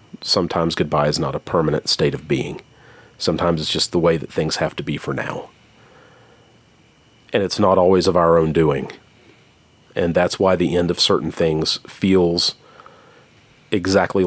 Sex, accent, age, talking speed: male, American, 40-59, 165 wpm